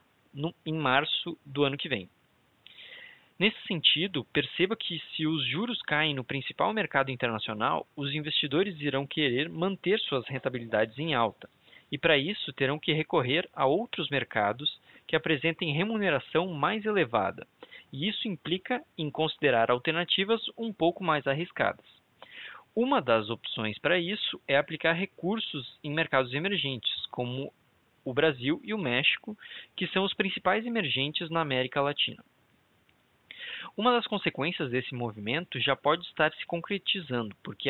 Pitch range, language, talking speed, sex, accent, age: 135-180 Hz, Portuguese, 140 wpm, male, Brazilian, 20-39